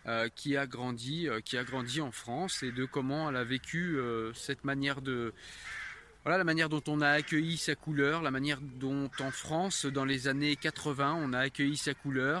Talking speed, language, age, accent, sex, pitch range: 195 wpm, French, 20-39, French, male, 130-170 Hz